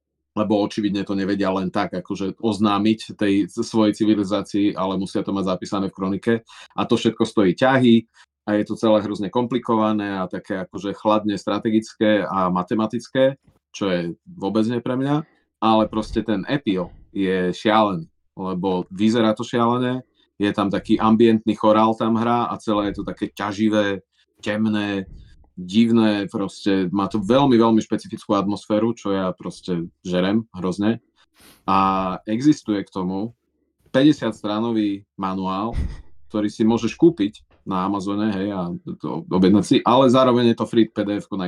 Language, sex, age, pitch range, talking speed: Slovak, male, 30-49, 95-115 Hz, 150 wpm